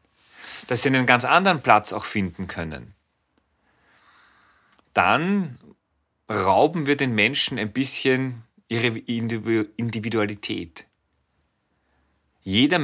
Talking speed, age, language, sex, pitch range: 90 wpm, 30-49, German, male, 105-135 Hz